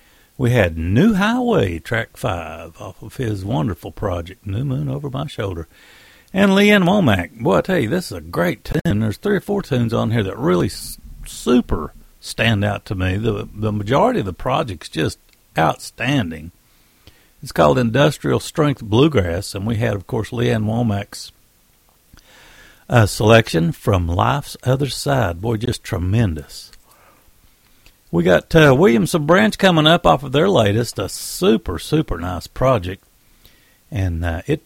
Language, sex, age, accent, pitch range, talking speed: English, male, 60-79, American, 105-155 Hz, 155 wpm